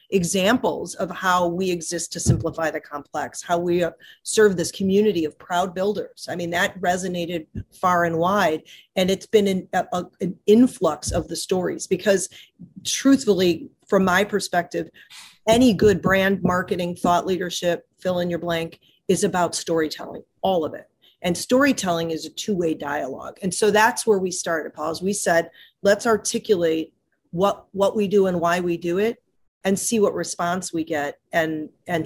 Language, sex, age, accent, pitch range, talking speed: English, female, 40-59, American, 160-200 Hz, 165 wpm